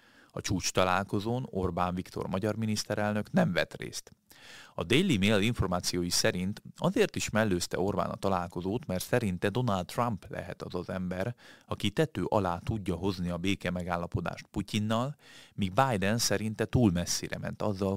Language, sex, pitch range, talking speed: Hungarian, male, 90-110 Hz, 150 wpm